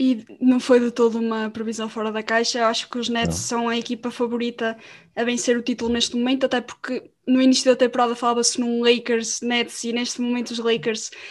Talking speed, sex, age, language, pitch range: 210 wpm, female, 10-29, Portuguese, 230-250 Hz